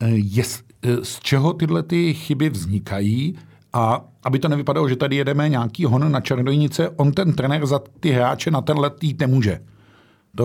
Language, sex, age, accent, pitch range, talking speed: Czech, male, 50-69, native, 115-155 Hz, 165 wpm